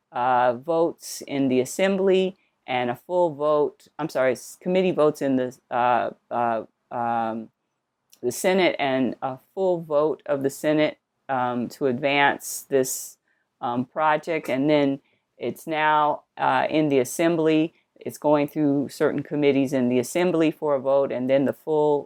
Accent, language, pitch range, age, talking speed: American, English, 125-150 Hz, 40-59, 145 wpm